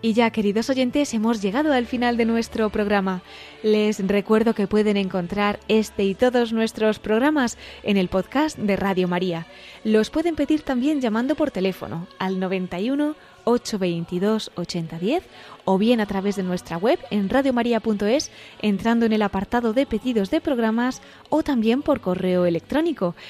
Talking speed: 155 wpm